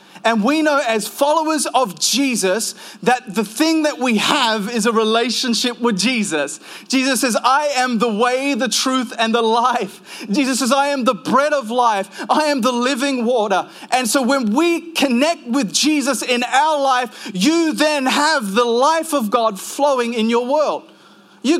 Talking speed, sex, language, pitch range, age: 180 wpm, male, English, 225-285 Hz, 30-49